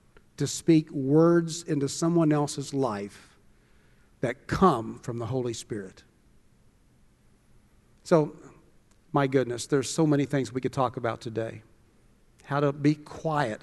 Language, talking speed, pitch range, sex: English, 130 wpm, 130-160 Hz, male